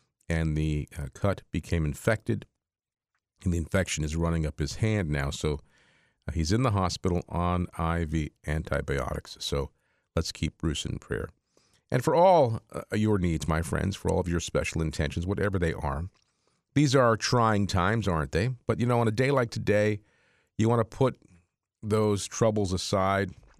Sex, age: male, 50-69